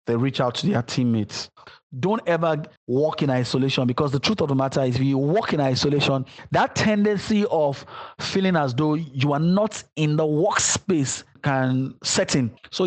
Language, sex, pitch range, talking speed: English, male, 135-160 Hz, 180 wpm